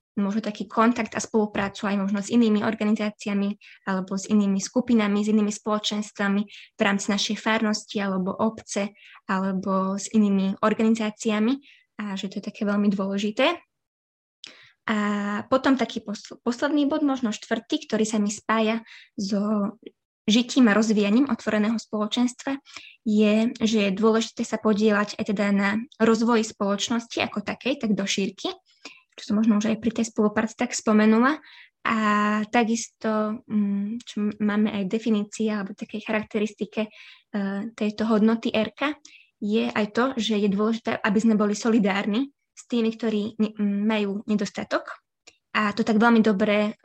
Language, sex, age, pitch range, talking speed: Slovak, female, 20-39, 205-225 Hz, 140 wpm